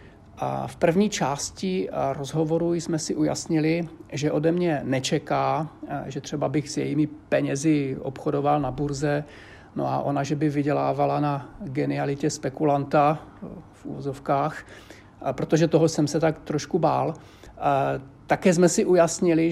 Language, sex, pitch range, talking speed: Czech, male, 140-160 Hz, 130 wpm